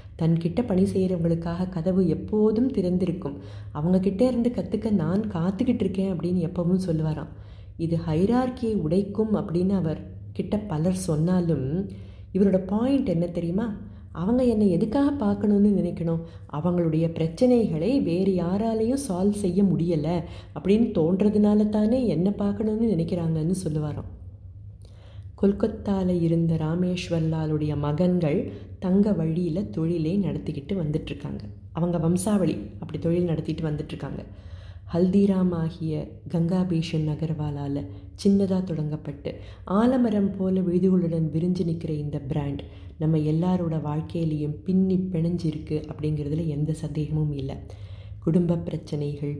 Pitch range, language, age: 150-190 Hz, Tamil, 30-49